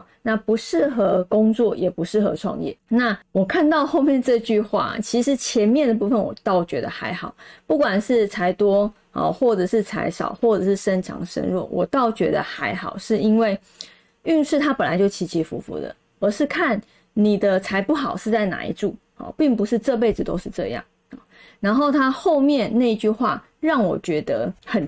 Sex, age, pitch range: female, 20-39, 200-255 Hz